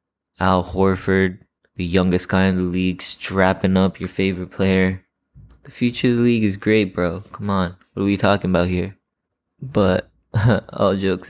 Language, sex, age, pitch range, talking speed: English, male, 20-39, 90-105 Hz, 170 wpm